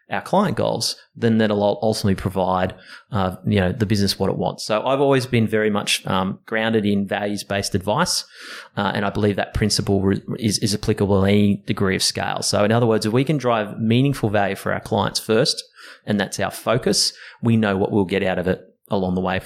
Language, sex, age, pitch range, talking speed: English, male, 30-49, 100-115 Hz, 220 wpm